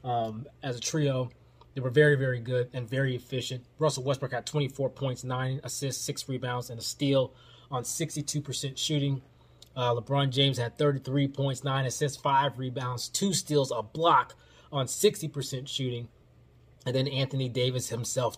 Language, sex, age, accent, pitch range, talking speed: English, male, 20-39, American, 125-145 Hz, 160 wpm